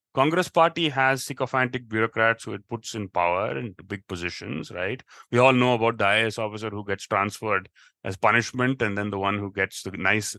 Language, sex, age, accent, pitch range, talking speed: Bengali, male, 30-49, native, 115-165 Hz, 195 wpm